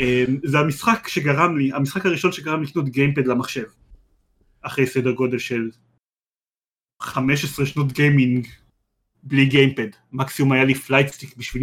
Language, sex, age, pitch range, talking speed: Hebrew, male, 30-49, 125-155 Hz, 135 wpm